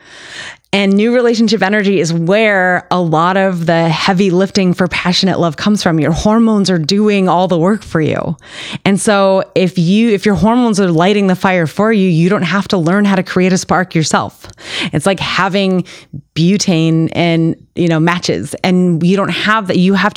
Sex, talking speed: female, 195 wpm